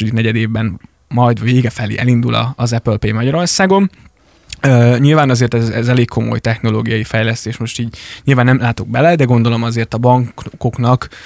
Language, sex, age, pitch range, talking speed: Hungarian, male, 20-39, 115-130 Hz, 155 wpm